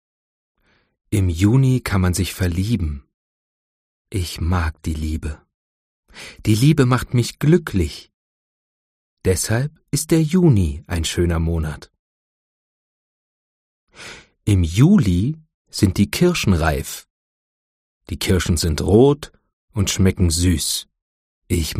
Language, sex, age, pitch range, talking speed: Arabic, male, 40-59, 80-120 Hz, 100 wpm